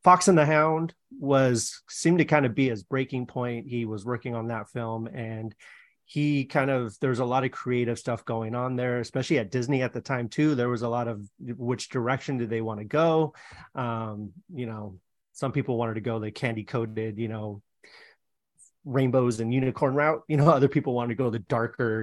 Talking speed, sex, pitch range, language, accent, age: 210 wpm, male, 115-135 Hz, English, American, 30-49